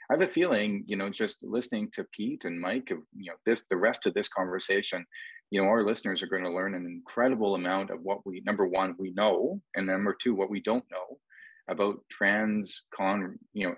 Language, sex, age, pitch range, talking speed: English, male, 40-59, 95-125 Hz, 220 wpm